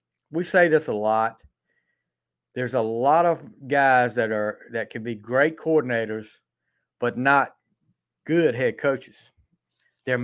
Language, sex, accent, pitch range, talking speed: English, male, American, 120-155 Hz, 135 wpm